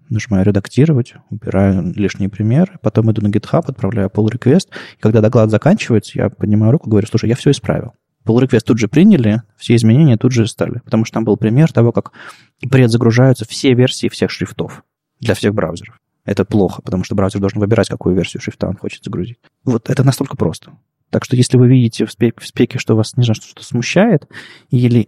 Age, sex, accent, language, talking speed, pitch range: 20-39, male, native, Russian, 195 wpm, 105-130 Hz